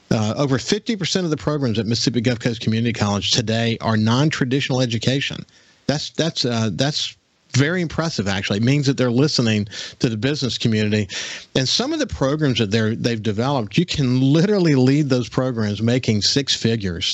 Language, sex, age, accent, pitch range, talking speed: English, male, 50-69, American, 115-140 Hz, 175 wpm